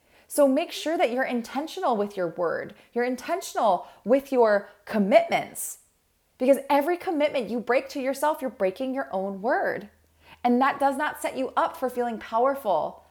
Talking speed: 165 wpm